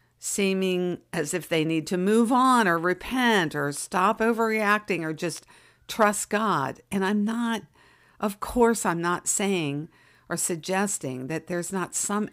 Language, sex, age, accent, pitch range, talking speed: English, female, 60-79, American, 155-200 Hz, 150 wpm